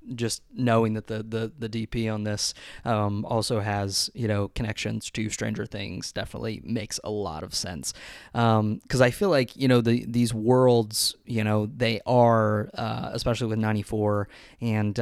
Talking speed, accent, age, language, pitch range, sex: 175 wpm, American, 20-39, English, 105-120 Hz, male